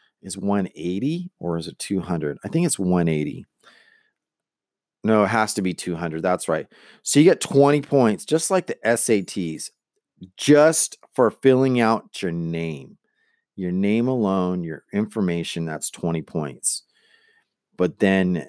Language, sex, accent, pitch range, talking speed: English, male, American, 95-145 Hz, 140 wpm